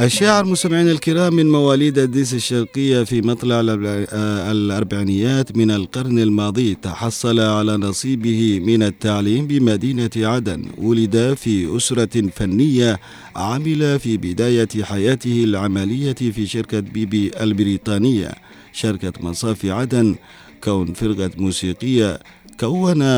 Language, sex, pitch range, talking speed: Arabic, male, 100-120 Hz, 105 wpm